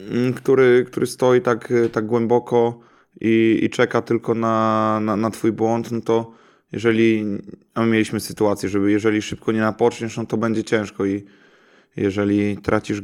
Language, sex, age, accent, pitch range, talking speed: Polish, male, 20-39, native, 100-115 Hz, 155 wpm